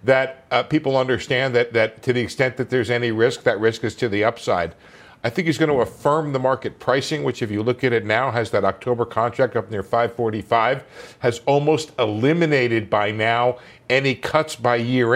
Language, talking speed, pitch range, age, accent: English, 200 wpm, 120-155 Hz, 50-69, American